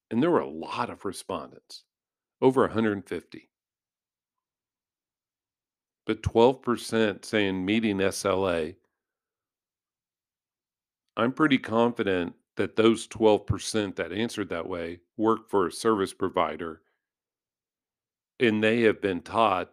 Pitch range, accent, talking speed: 95-115 Hz, American, 105 wpm